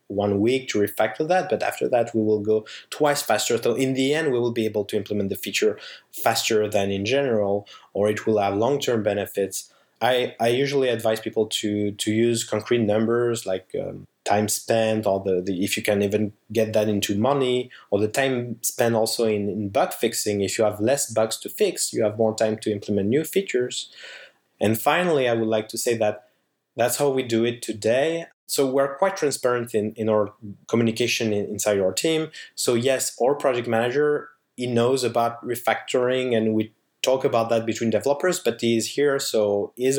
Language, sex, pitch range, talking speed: English, male, 105-130 Hz, 200 wpm